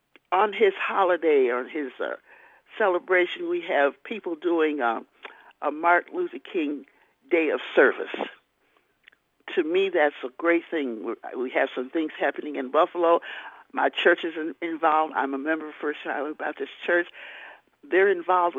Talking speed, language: 150 wpm, English